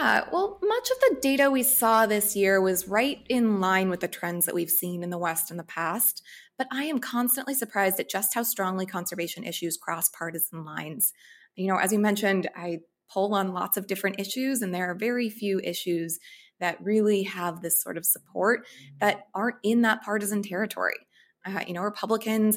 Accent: American